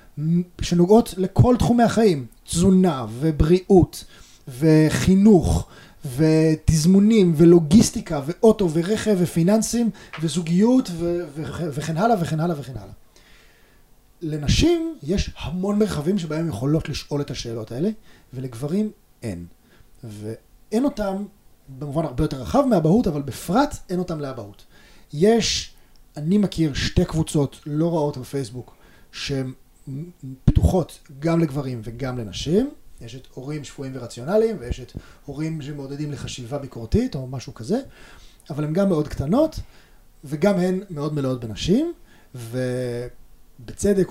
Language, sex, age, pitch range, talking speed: Hebrew, male, 30-49, 130-185 Hz, 115 wpm